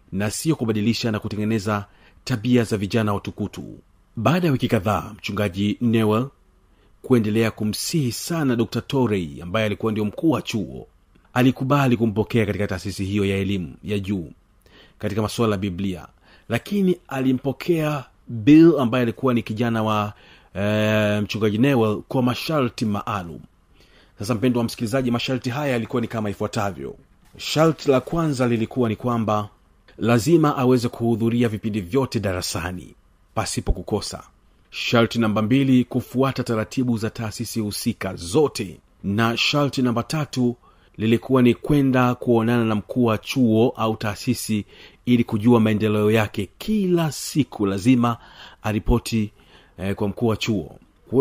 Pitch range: 105-125 Hz